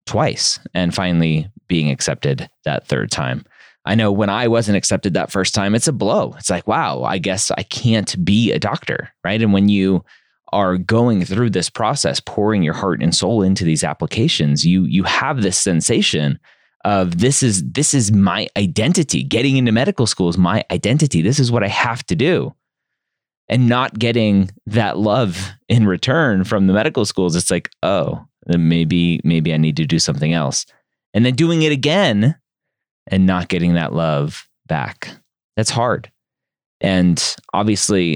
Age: 30-49